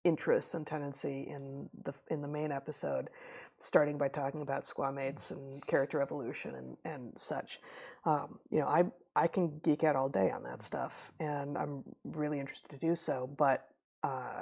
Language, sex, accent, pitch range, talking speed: English, female, American, 145-180 Hz, 175 wpm